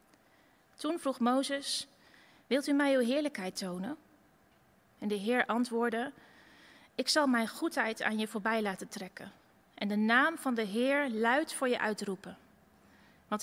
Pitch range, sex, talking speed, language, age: 215-265 Hz, female, 145 wpm, Dutch, 30-49